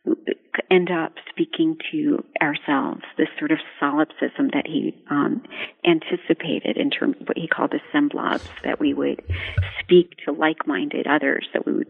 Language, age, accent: English, 40-59, American